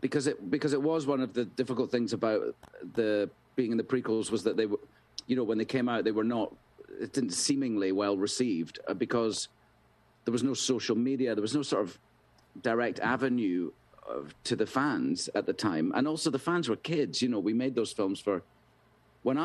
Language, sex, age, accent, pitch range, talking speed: English, male, 40-59, British, 110-135 Hz, 210 wpm